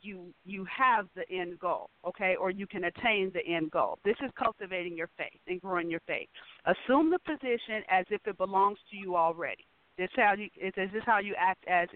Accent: American